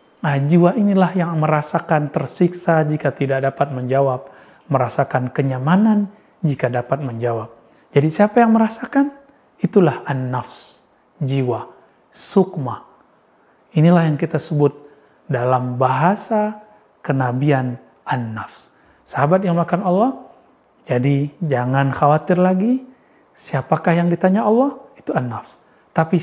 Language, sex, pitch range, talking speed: Indonesian, male, 135-180 Hz, 105 wpm